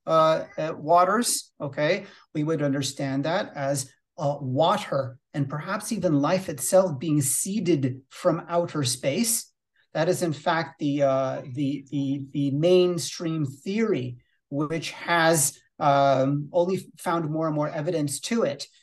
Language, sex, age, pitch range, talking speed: English, male, 40-59, 145-185 Hz, 135 wpm